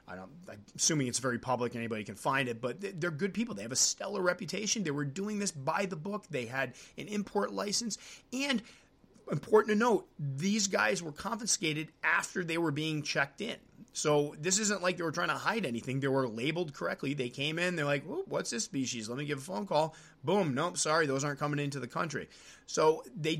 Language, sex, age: English, male, 30-49